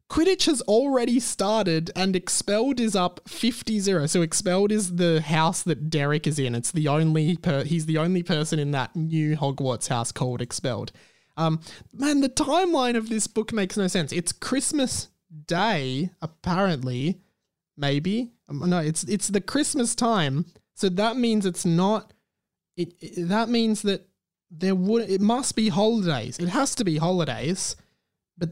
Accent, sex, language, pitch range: Australian, male, English, 155-205 Hz